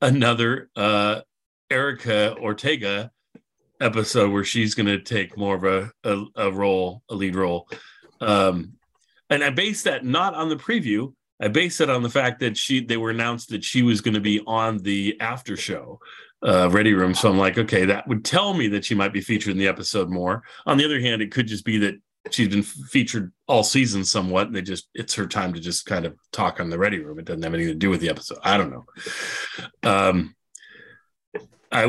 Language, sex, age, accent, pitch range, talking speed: English, male, 40-59, American, 100-125 Hz, 210 wpm